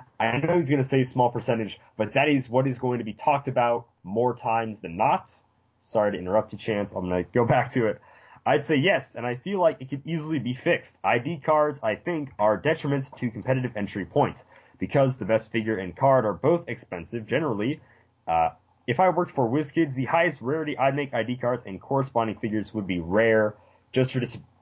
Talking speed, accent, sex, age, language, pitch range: 215 wpm, American, male, 20-39, English, 105-140 Hz